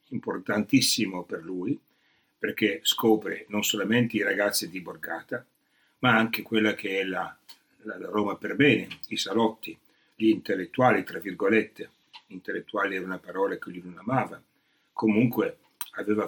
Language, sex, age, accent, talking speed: Italian, male, 60-79, native, 135 wpm